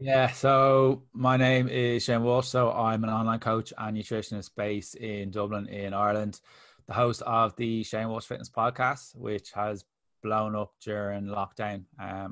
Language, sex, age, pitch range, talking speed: English, male, 20-39, 95-105 Hz, 165 wpm